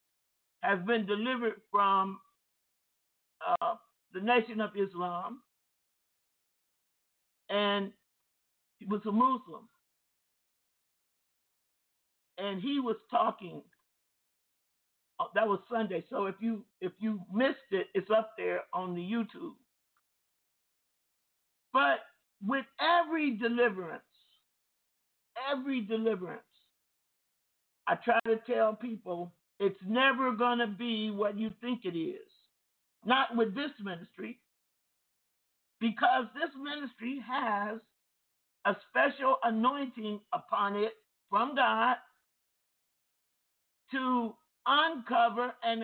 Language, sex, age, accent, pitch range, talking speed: English, male, 50-69, American, 205-265 Hz, 95 wpm